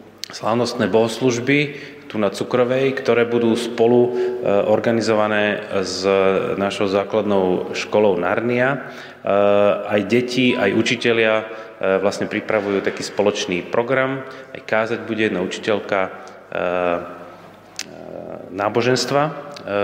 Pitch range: 95-115 Hz